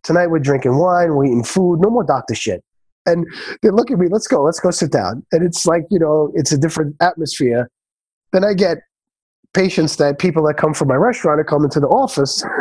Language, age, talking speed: English, 30-49, 225 wpm